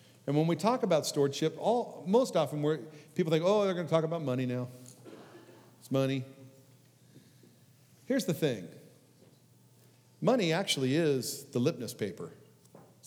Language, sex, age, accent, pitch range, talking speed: English, male, 50-69, American, 115-160 Hz, 145 wpm